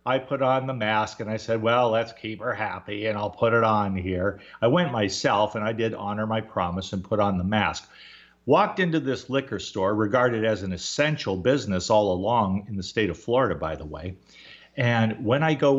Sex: male